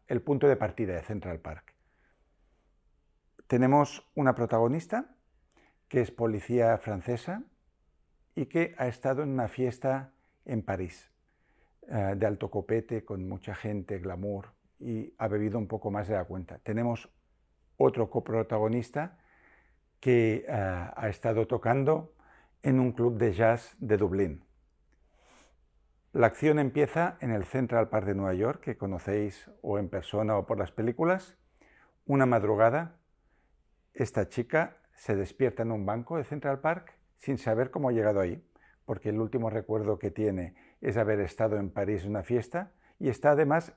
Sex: male